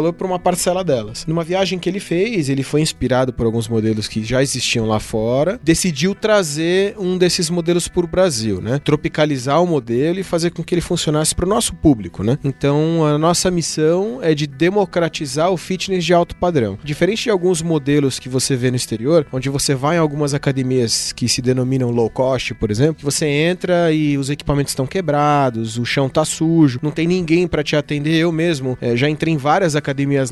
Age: 20-39